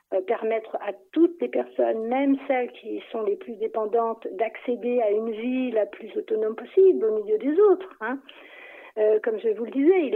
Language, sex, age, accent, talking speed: French, female, 50-69, French, 190 wpm